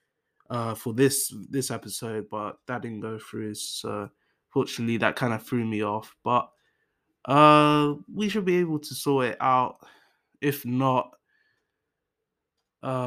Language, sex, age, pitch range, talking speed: English, male, 20-39, 115-145 Hz, 140 wpm